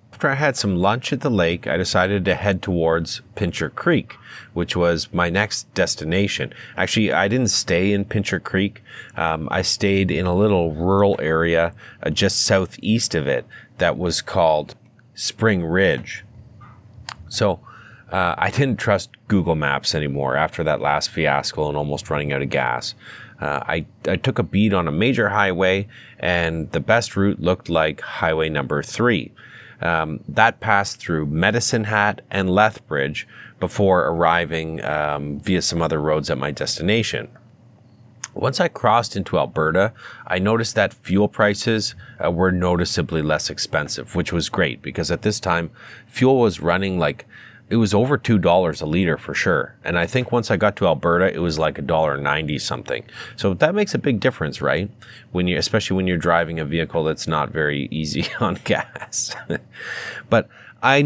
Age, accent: 30-49, American